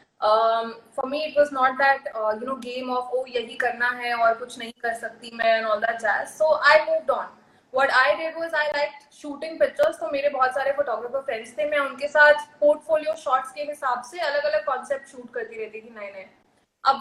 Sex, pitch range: female, 245-300 Hz